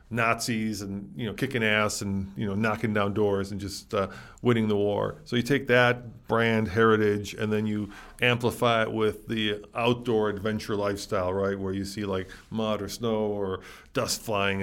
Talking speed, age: 185 wpm, 40-59